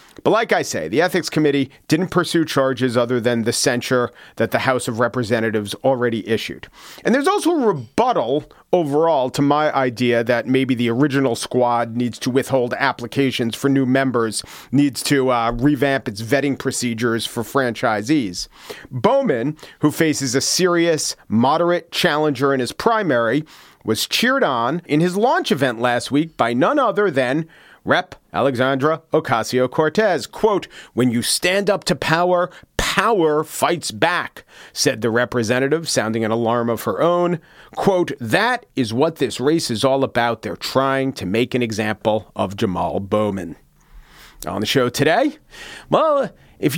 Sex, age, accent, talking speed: male, 40-59, American, 155 wpm